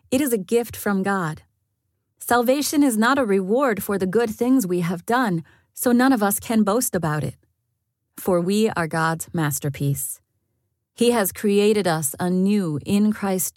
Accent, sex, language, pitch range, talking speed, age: American, female, English, 150-215 Hz, 170 wpm, 40-59